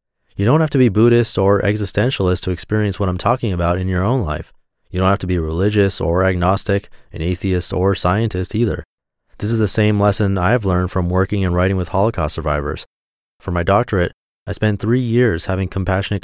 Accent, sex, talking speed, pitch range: American, male, 200 wpm, 90-105 Hz